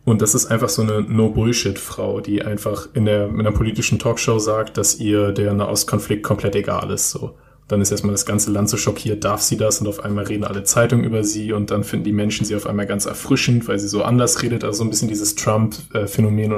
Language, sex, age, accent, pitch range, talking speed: German, male, 20-39, German, 105-120 Hz, 230 wpm